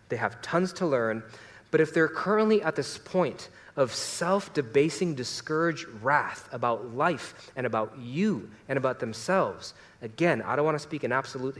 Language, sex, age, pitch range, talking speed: English, male, 30-49, 110-170 Hz, 165 wpm